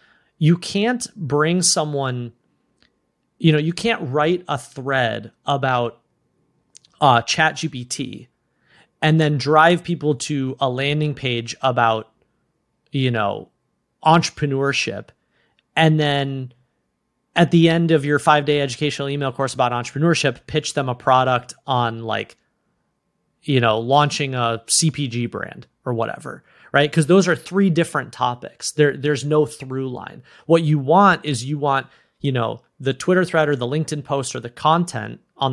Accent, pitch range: American, 125-155 Hz